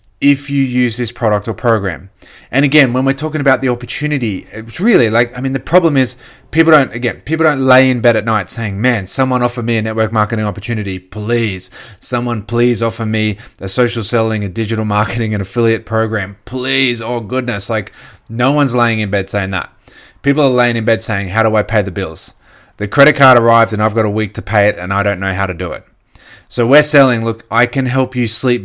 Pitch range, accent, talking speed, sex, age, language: 105-130 Hz, Australian, 225 wpm, male, 20-39, English